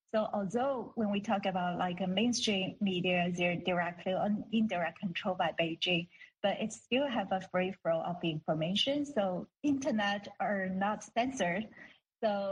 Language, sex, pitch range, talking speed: English, female, 180-225 Hz, 155 wpm